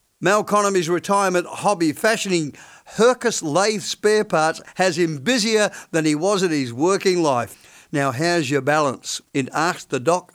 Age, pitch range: 50-69, 130-175 Hz